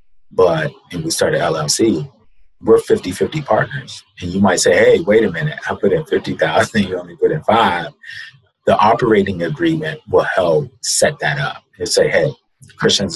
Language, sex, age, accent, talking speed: English, male, 30-49, American, 180 wpm